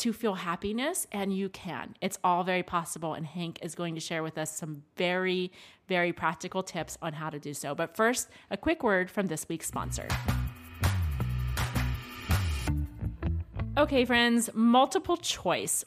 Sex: female